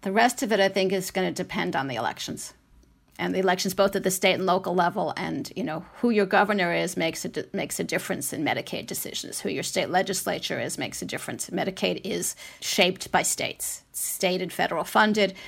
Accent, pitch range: American, 185-215 Hz